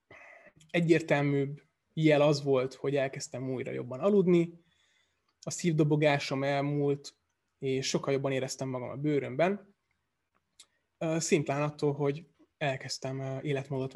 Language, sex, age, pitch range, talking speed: Hungarian, male, 20-39, 130-150 Hz, 105 wpm